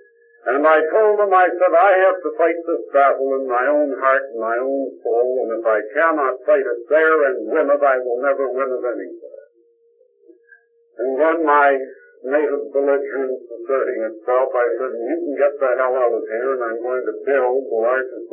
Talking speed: 200 wpm